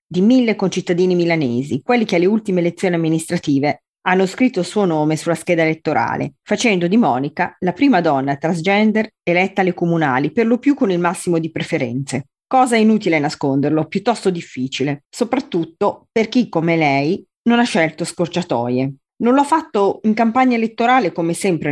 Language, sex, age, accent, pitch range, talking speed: Italian, female, 30-49, native, 155-215 Hz, 165 wpm